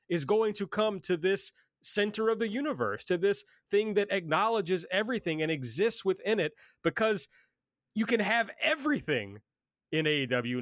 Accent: American